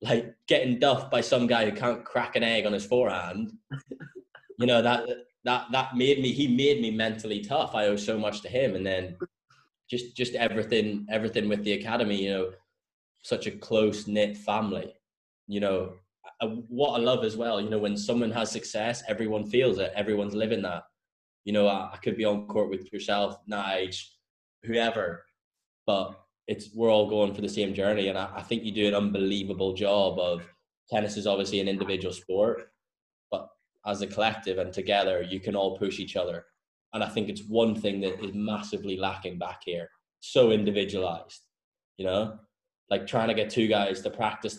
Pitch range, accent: 100-115 Hz, British